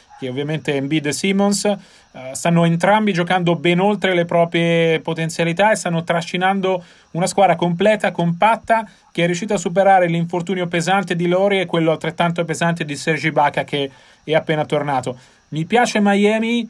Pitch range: 160-185 Hz